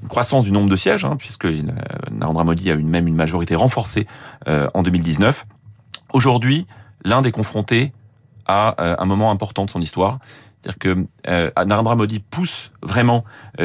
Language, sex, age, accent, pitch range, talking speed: French, male, 30-49, French, 90-115 Hz, 170 wpm